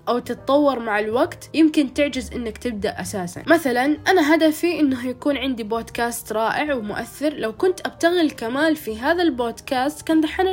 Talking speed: 155 wpm